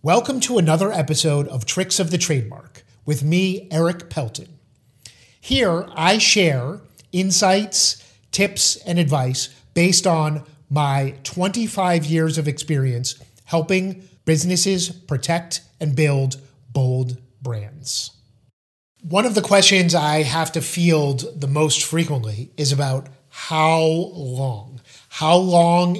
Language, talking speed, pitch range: English, 120 wpm, 140-175 Hz